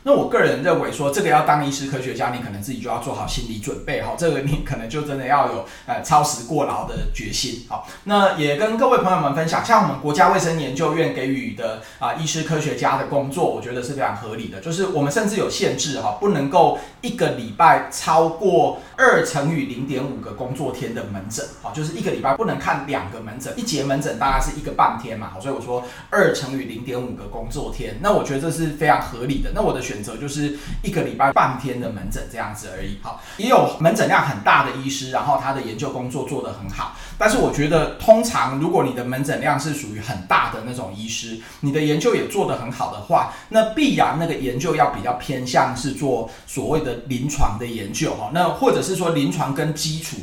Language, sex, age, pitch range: Chinese, male, 20-39, 120-155 Hz